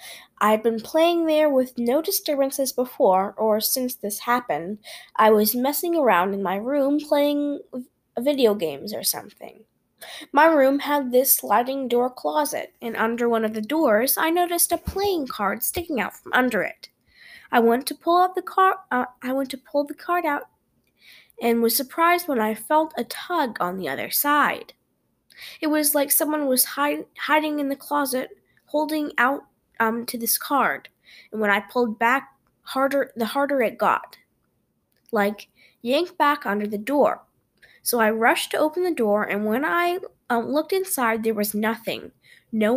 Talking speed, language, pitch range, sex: 175 wpm, English, 225-305 Hz, female